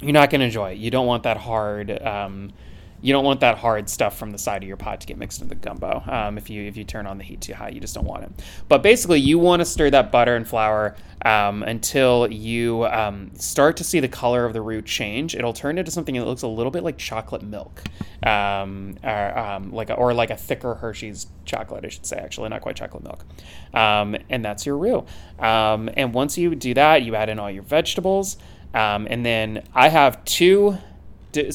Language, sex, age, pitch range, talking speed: English, male, 20-39, 105-125 Hz, 235 wpm